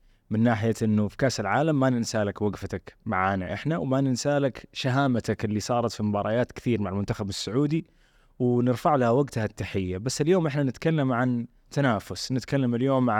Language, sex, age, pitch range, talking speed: Arabic, male, 20-39, 110-140 Hz, 165 wpm